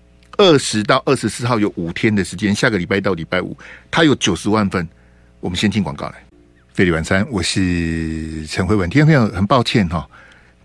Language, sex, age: Chinese, male, 60-79